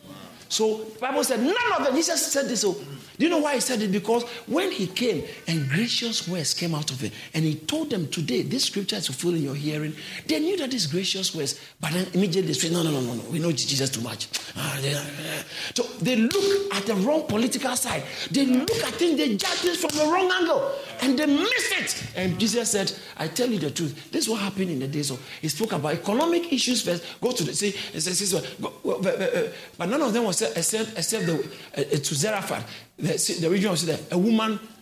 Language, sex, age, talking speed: English, male, 50-69, 235 wpm